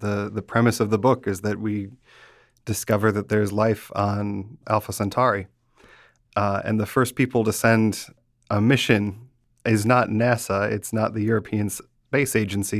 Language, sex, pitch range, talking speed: English, male, 105-125 Hz, 160 wpm